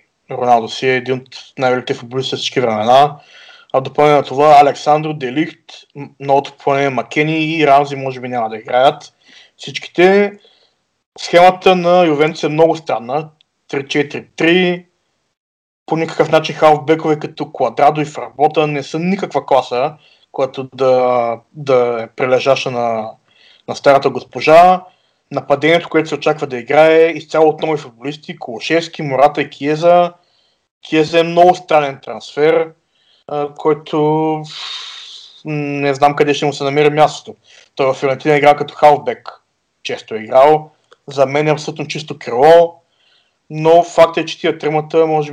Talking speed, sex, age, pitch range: 135 wpm, male, 20-39, 135-160 Hz